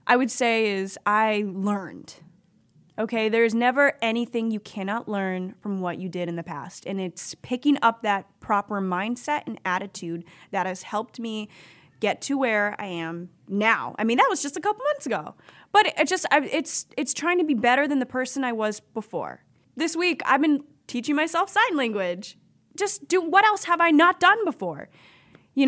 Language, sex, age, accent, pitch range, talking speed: English, female, 10-29, American, 205-285 Hz, 195 wpm